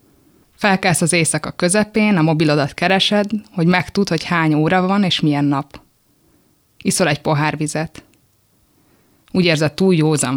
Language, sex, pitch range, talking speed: Hungarian, female, 145-175 Hz, 140 wpm